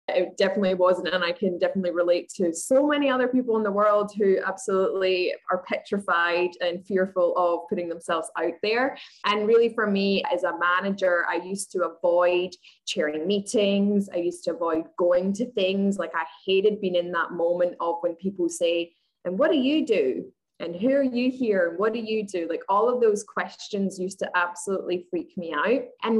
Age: 20-39